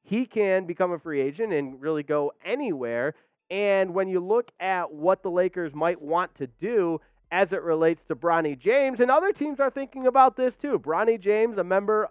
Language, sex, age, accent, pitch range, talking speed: English, male, 30-49, American, 155-215 Hz, 200 wpm